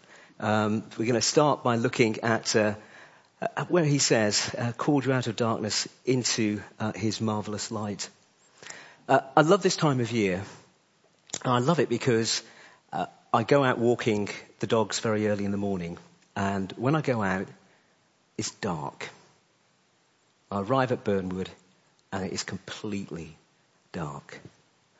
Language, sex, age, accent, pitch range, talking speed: English, male, 50-69, British, 105-130 Hz, 150 wpm